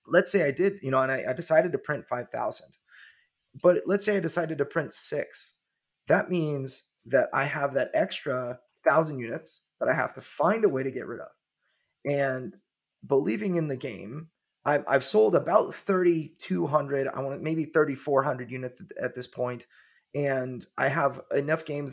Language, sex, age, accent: English, male, 30-49, American